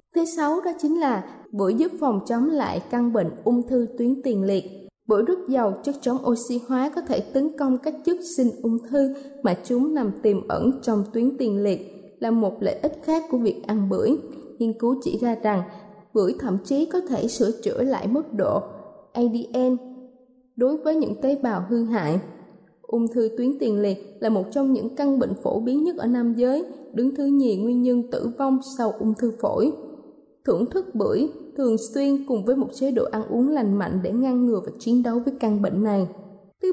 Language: Thai